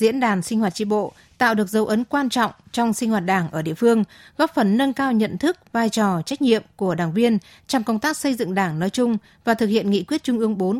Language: Vietnamese